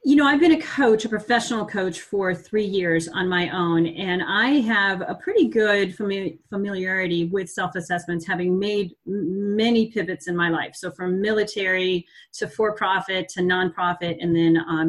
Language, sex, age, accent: English, female, 30-49, American